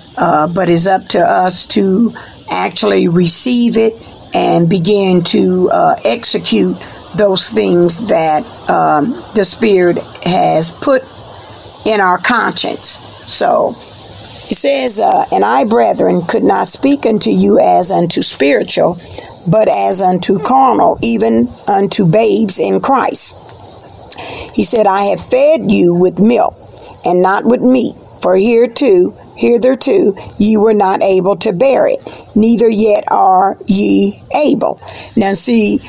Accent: American